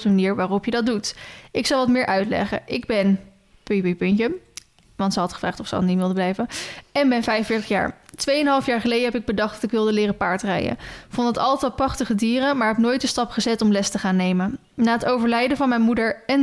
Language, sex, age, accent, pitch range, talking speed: Dutch, female, 10-29, Dutch, 210-245 Hz, 235 wpm